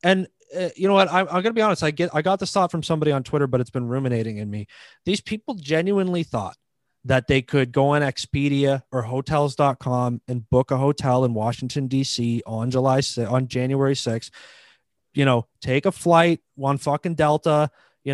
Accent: American